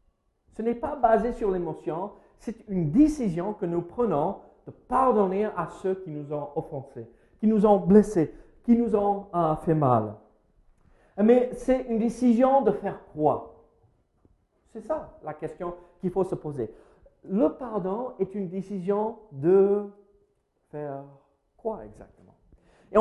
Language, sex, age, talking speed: French, male, 50-69, 145 wpm